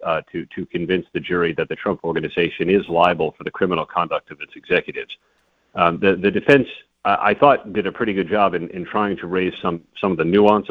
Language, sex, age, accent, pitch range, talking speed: English, male, 40-59, American, 95-120 Hz, 230 wpm